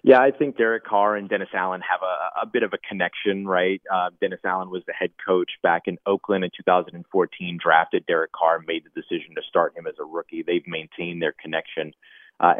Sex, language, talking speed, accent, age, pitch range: male, English, 215 wpm, American, 30-49, 90-115 Hz